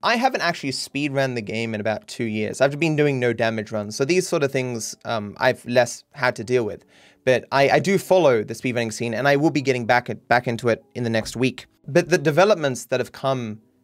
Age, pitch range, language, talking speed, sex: 20-39, 115-150 Hz, English, 245 wpm, male